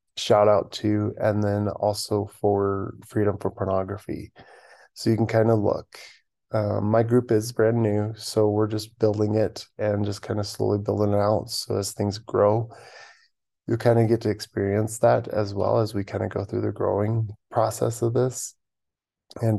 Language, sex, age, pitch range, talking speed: English, male, 20-39, 105-115 Hz, 180 wpm